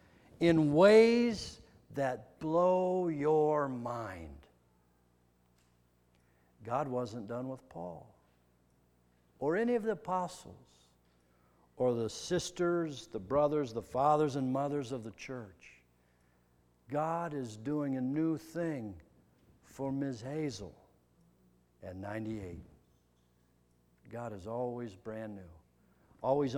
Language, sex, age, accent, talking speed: English, male, 60-79, American, 100 wpm